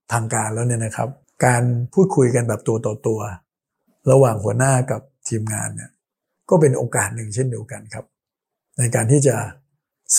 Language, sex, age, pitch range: Thai, male, 60-79, 115-140 Hz